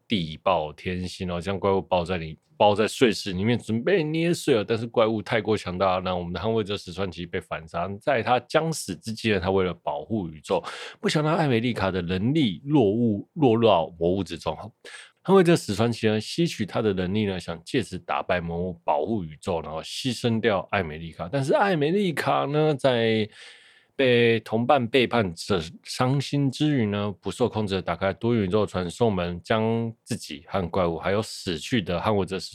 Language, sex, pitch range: Chinese, male, 90-120 Hz